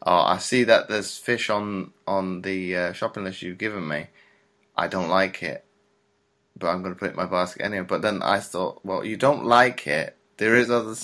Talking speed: 225 wpm